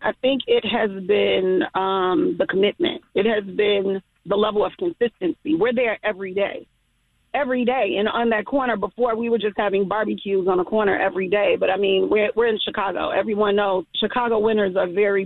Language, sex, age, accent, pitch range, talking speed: English, female, 40-59, American, 210-265 Hz, 195 wpm